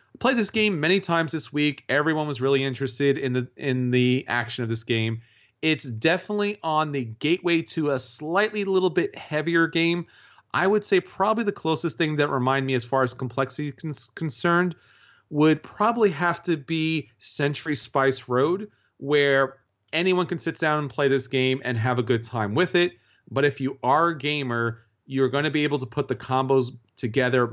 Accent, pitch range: American, 130-175 Hz